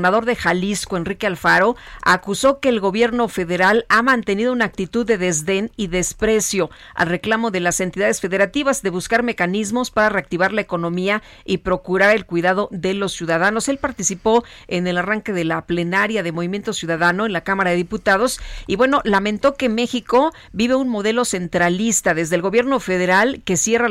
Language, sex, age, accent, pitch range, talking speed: Spanish, female, 40-59, Mexican, 180-225 Hz, 175 wpm